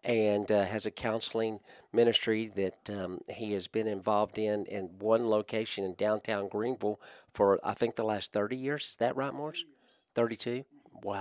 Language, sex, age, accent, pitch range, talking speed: English, male, 50-69, American, 110-130 Hz, 165 wpm